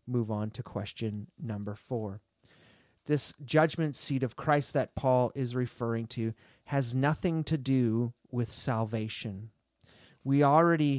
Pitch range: 115-150 Hz